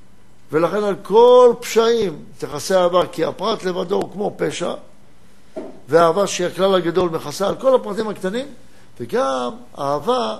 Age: 60-79